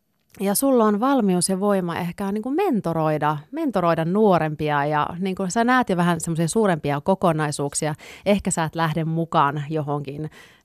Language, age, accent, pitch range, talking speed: Finnish, 30-49, native, 155-195 Hz, 160 wpm